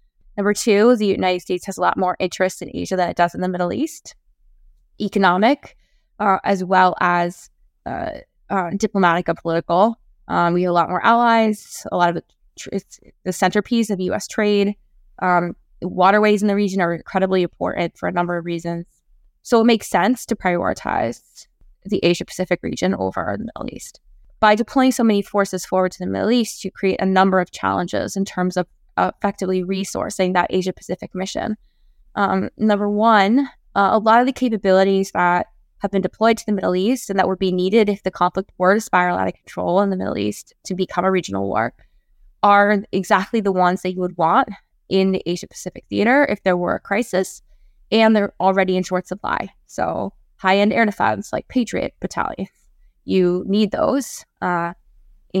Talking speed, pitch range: 185 wpm, 180-210 Hz